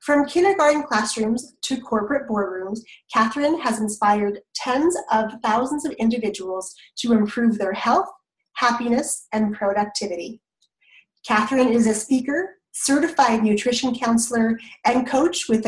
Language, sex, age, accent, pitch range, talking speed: English, female, 30-49, American, 210-270 Hz, 120 wpm